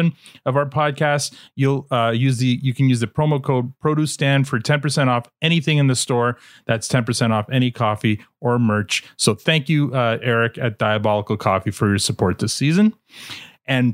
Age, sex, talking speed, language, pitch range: 30-49, male, 195 wpm, English, 120-165 Hz